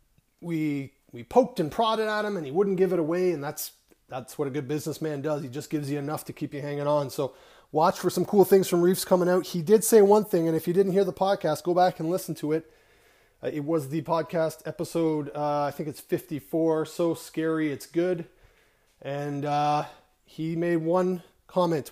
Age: 30-49